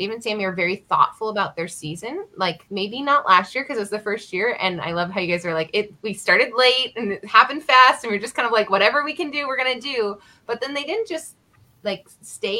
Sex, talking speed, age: female, 270 wpm, 20-39